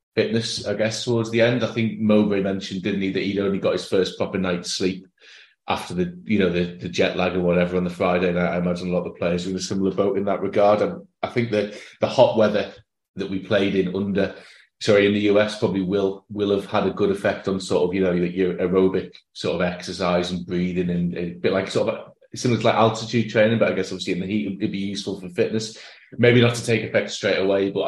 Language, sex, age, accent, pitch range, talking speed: English, male, 30-49, British, 90-100 Hz, 255 wpm